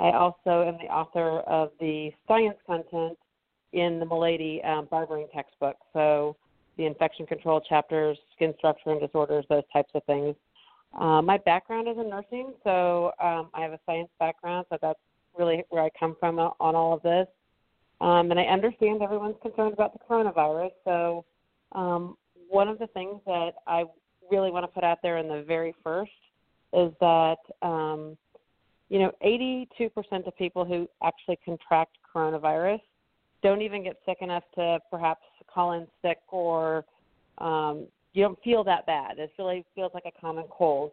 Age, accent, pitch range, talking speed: 40-59, American, 160-185 Hz, 165 wpm